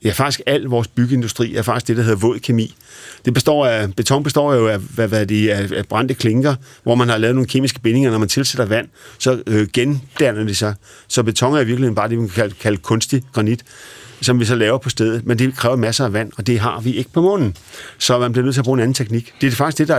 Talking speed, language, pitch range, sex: 260 wpm, Danish, 110-130 Hz, male